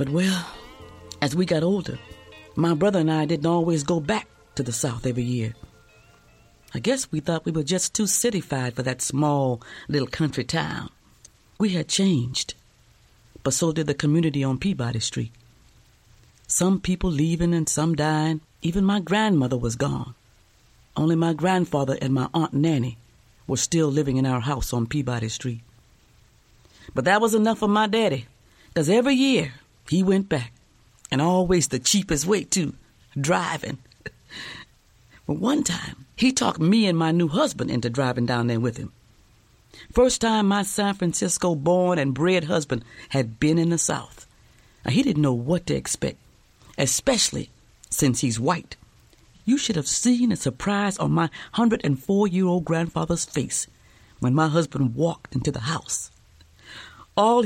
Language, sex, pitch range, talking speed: English, female, 125-180 Hz, 160 wpm